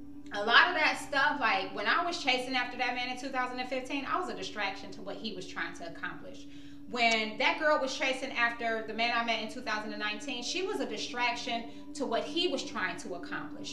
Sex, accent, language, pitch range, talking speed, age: female, American, English, 225-285 Hz, 215 wpm, 30-49